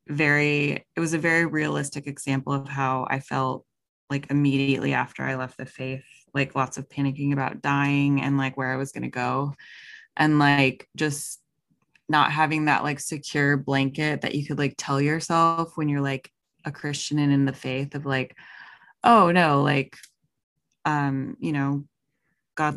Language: English